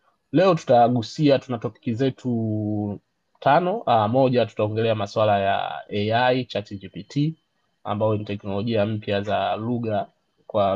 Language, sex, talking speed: Swahili, male, 115 wpm